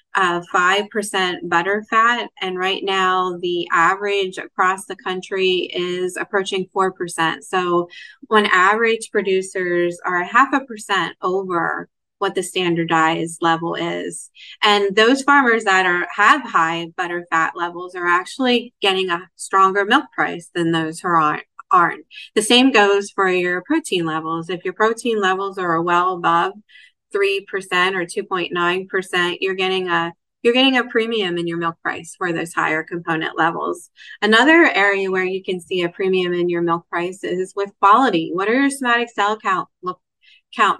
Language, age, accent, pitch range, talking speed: English, 20-39, American, 175-200 Hz, 165 wpm